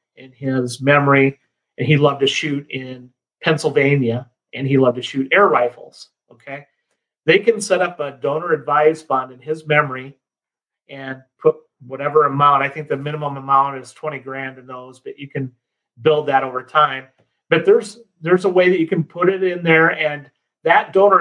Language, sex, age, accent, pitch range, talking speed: English, male, 40-59, American, 135-160 Hz, 185 wpm